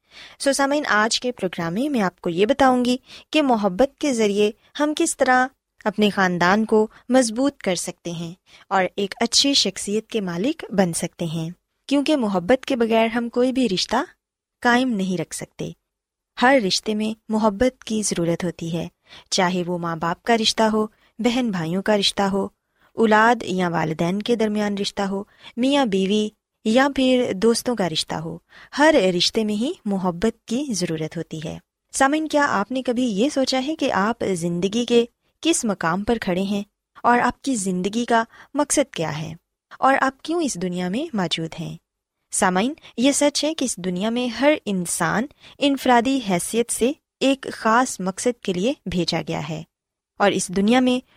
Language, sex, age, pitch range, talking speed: Urdu, female, 20-39, 185-255 Hz, 175 wpm